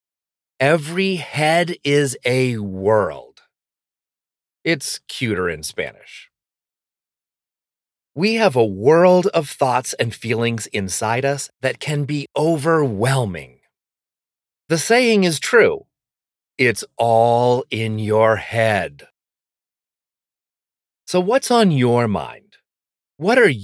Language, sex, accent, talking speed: English, male, American, 100 wpm